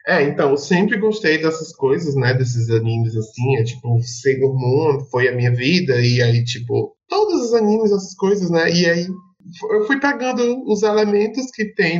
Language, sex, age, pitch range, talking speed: Portuguese, male, 20-39, 140-220 Hz, 185 wpm